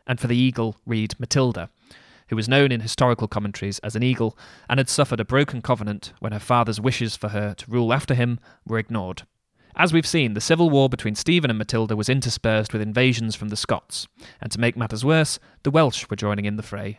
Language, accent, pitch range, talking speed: English, British, 110-130 Hz, 220 wpm